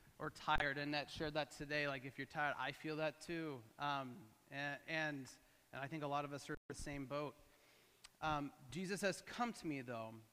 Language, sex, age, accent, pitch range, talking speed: English, male, 30-49, American, 145-190 Hz, 210 wpm